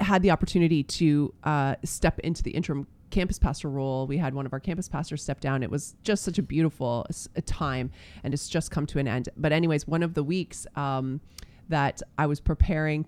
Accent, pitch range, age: American, 145-180 Hz, 30-49